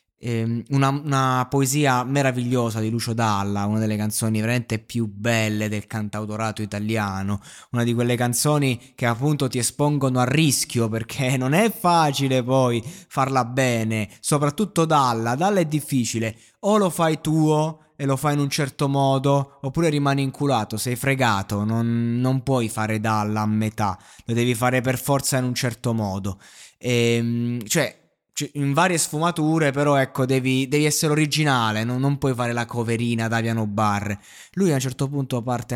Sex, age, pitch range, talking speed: male, 20-39, 115-145 Hz, 160 wpm